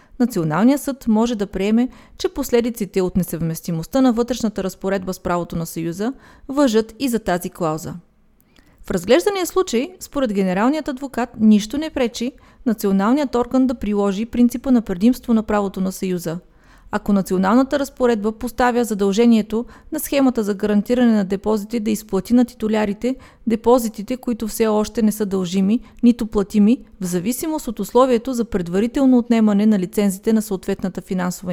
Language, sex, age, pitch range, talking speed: Bulgarian, female, 30-49, 195-255 Hz, 145 wpm